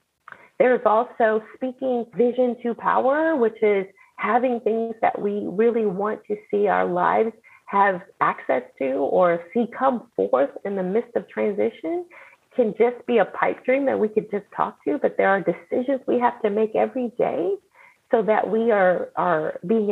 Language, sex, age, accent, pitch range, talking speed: English, female, 30-49, American, 190-250 Hz, 180 wpm